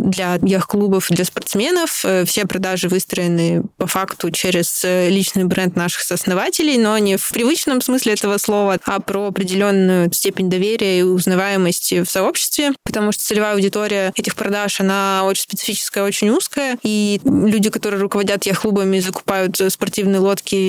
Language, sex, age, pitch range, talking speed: Russian, female, 20-39, 190-215 Hz, 145 wpm